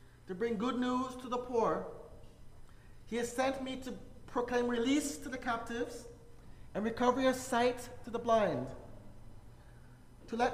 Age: 40-59